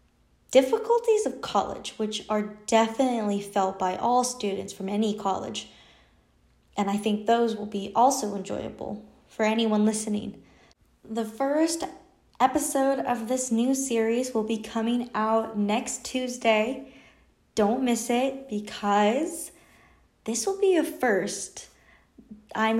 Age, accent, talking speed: 20-39, American, 125 wpm